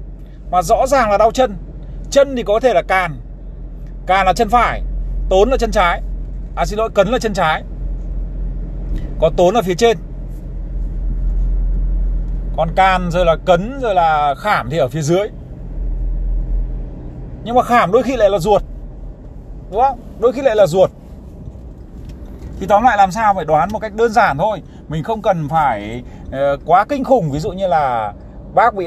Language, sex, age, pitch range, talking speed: Vietnamese, male, 20-39, 145-225 Hz, 175 wpm